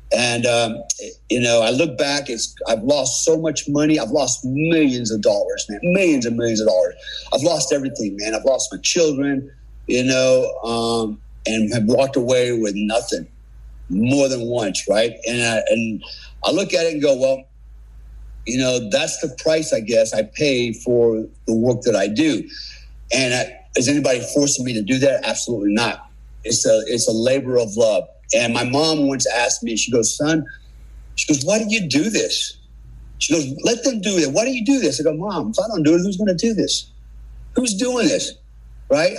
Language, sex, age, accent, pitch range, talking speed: English, male, 50-69, American, 115-165 Hz, 200 wpm